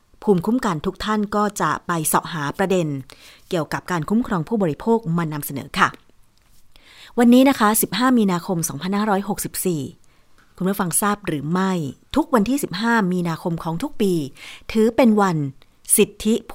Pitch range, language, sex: 165-220 Hz, Thai, female